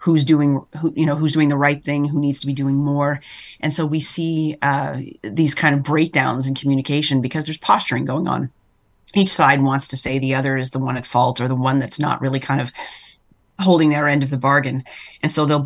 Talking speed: 230 wpm